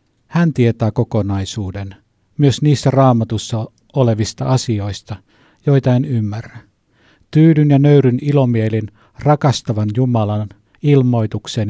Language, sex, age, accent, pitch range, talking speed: Finnish, male, 50-69, native, 110-130 Hz, 90 wpm